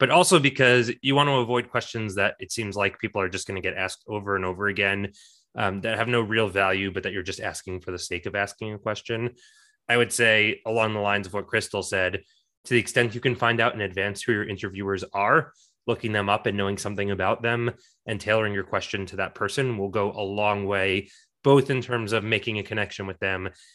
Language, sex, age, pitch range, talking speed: English, male, 20-39, 100-120 Hz, 235 wpm